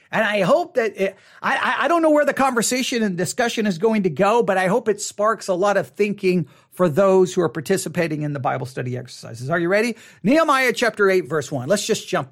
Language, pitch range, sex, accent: English, 185-265 Hz, male, American